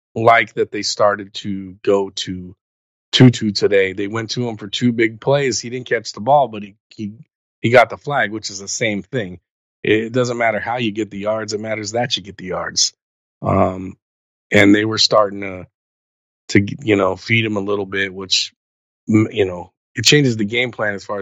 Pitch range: 95-120 Hz